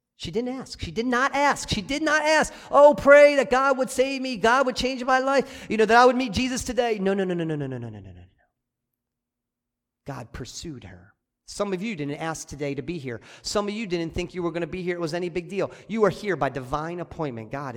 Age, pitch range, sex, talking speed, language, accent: 40-59, 135-190 Hz, male, 255 wpm, English, American